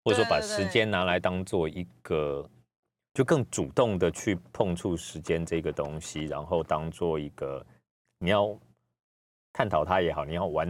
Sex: male